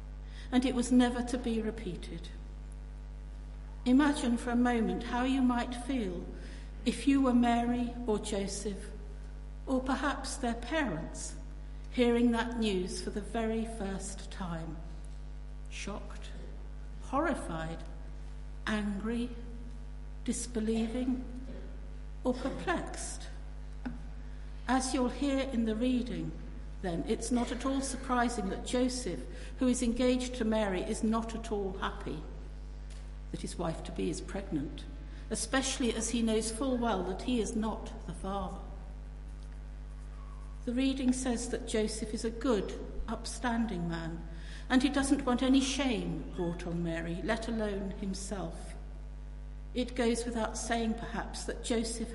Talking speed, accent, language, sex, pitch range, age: 125 wpm, British, English, female, 185-245 Hz, 60-79